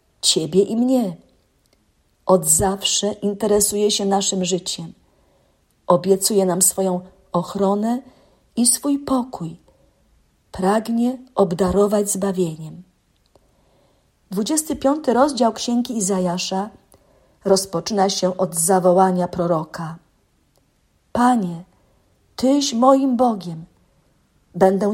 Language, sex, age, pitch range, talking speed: Polish, female, 40-59, 180-225 Hz, 80 wpm